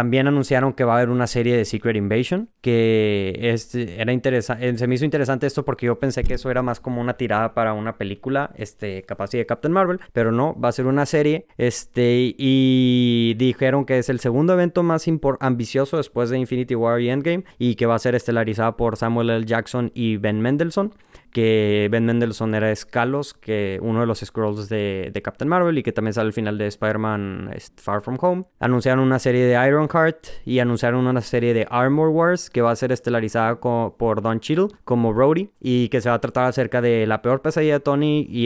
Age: 20-39